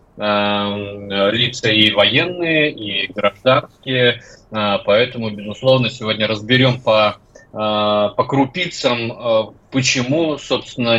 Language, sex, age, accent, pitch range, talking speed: Russian, male, 20-39, native, 105-125 Hz, 75 wpm